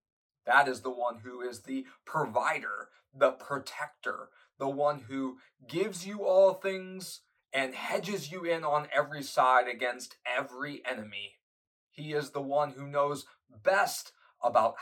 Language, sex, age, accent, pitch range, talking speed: English, male, 20-39, American, 135-195 Hz, 140 wpm